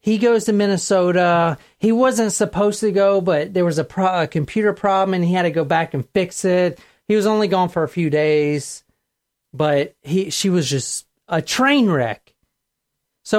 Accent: American